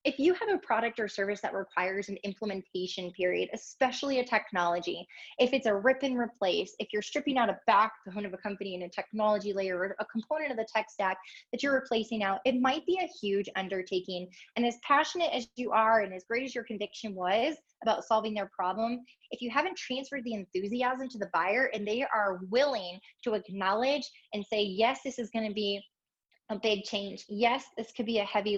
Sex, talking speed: female, 210 wpm